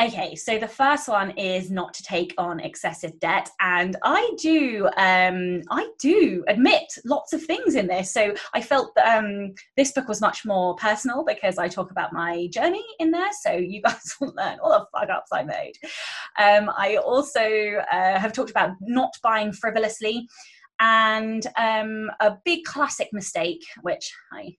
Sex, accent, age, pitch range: female, British, 20-39, 195-290 Hz